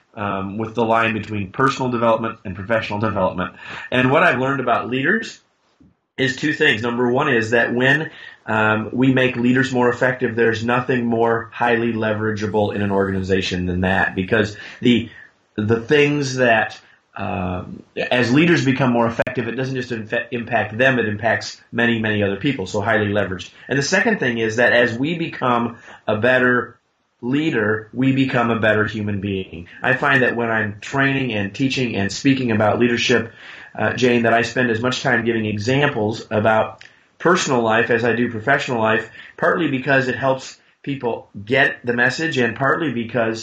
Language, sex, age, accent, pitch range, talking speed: English, male, 30-49, American, 110-125 Hz, 175 wpm